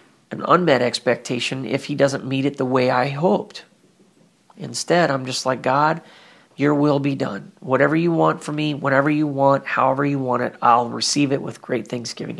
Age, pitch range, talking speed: 40-59, 130-150 Hz, 190 wpm